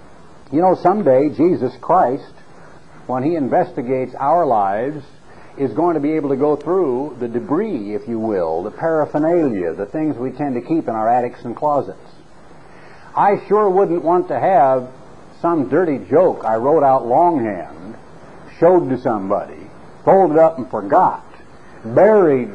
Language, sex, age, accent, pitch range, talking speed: English, male, 60-79, American, 135-205 Hz, 150 wpm